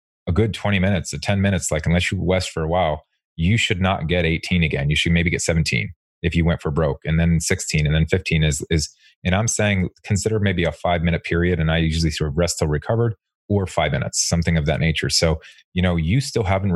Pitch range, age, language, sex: 80-90 Hz, 30-49, English, male